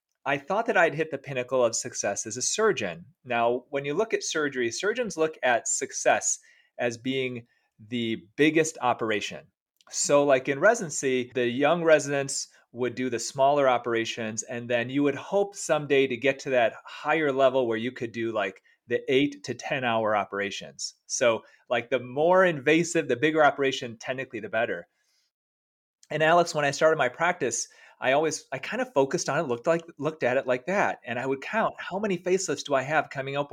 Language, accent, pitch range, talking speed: English, American, 120-160 Hz, 190 wpm